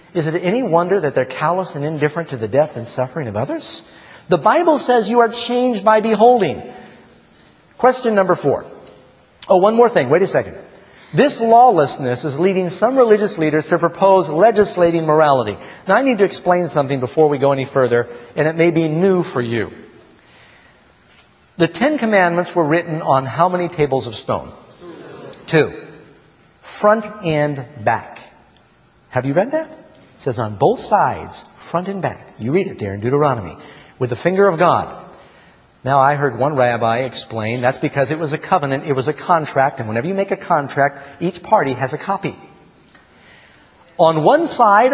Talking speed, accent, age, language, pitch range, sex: 175 wpm, American, 50-69, English, 140-195 Hz, male